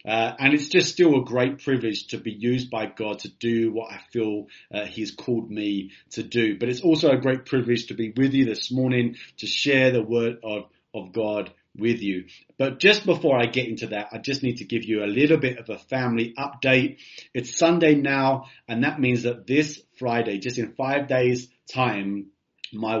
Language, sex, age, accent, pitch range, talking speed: English, male, 30-49, British, 105-130 Hz, 210 wpm